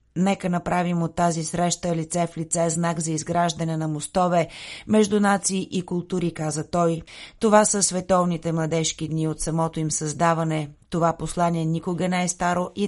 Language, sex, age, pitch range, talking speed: Bulgarian, female, 30-49, 160-180 Hz, 165 wpm